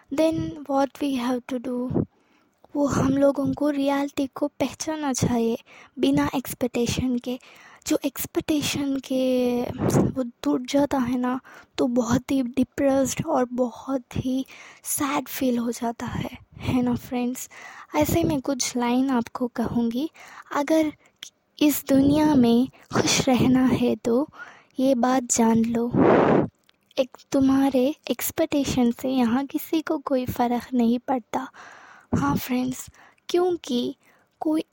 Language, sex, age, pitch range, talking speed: Hindi, female, 20-39, 250-290 Hz, 125 wpm